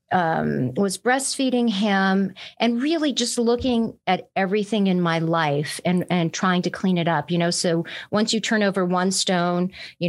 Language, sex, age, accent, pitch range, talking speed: English, female, 40-59, American, 175-220 Hz, 180 wpm